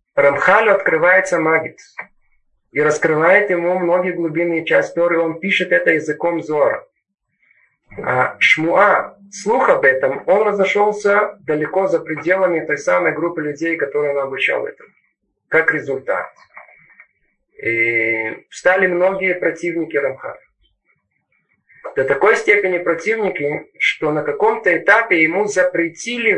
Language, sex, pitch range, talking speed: Russian, male, 155-215 Hz, 115 wpm